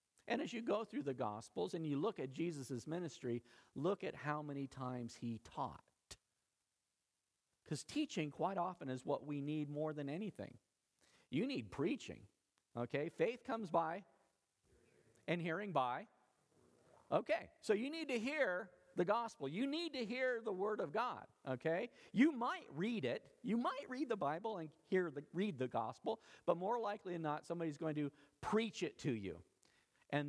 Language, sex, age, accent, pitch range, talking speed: English, male, 50-69, American, 130-195 Hz, 170 wpm